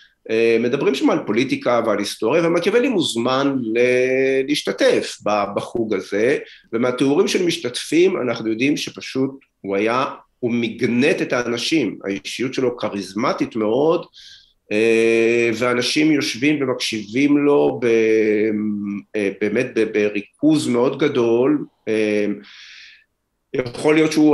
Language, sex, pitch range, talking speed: Hebrew, male, 105-140 Hz, 95 wpm